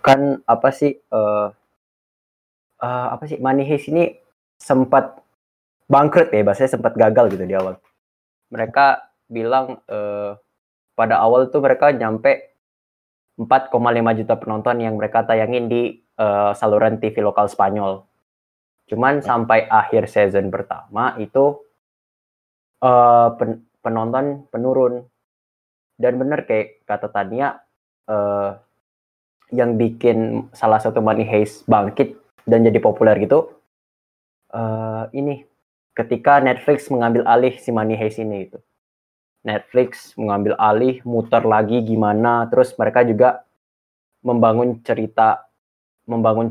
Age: 10-29